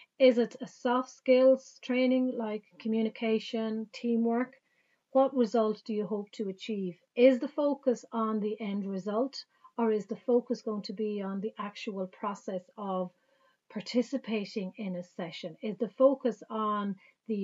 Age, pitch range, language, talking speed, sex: 30-49, 200-245 Hz, English, 150 wpm, female